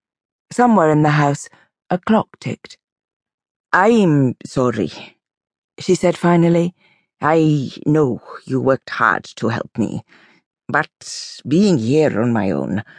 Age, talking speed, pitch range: 50-69, 120 wpm, 120-170 Hz